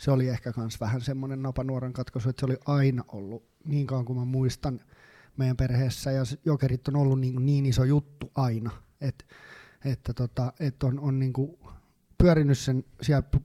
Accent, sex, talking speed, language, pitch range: native, male, 165 wpm, Finnish, 120-140 Hz